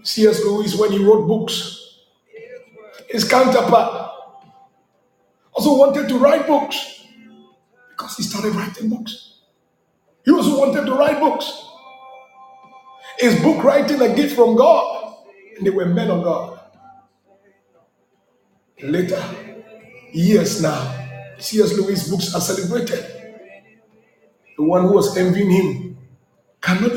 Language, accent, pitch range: English, Nigerian, 200-285 Hz